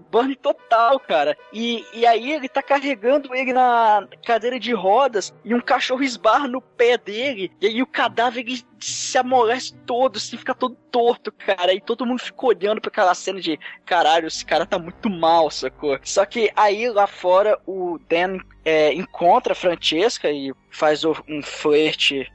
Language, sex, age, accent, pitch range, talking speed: Portuguese, male, 10-29, Brazilian, 165-250 Hz, 170 wpm